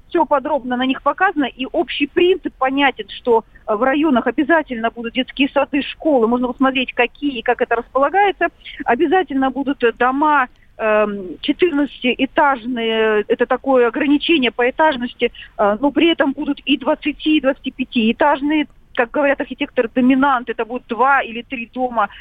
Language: Russian